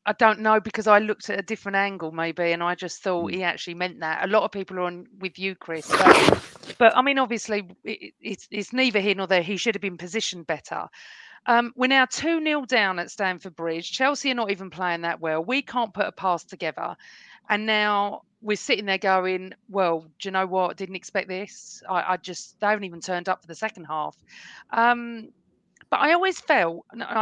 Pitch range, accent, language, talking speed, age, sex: 180-245 Hz, British, English, 215 wpm, 40-59, female